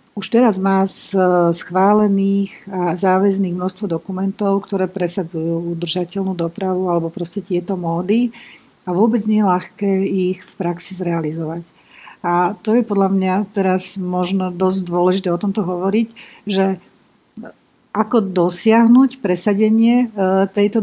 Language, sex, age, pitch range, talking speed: Slovak, female, 50-69, 180-210 Hz, 125 wpm